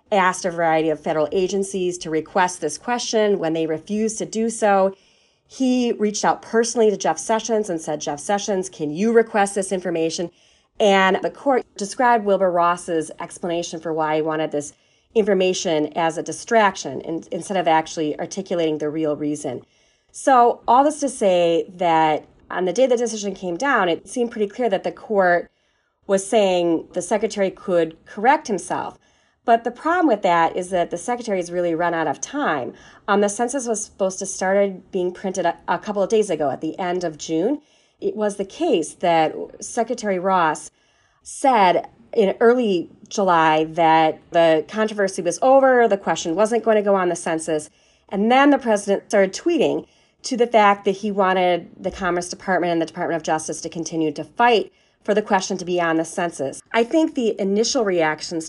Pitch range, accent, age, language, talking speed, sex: 165-215 Hz, American, 30-49, English, 185 wpm, female